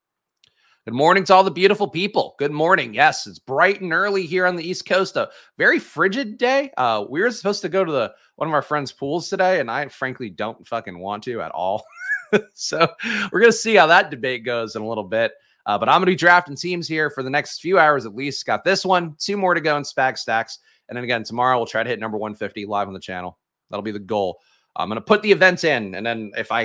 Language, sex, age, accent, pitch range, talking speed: English, male, 30-49, American, 115-185 Hz, 255 wpm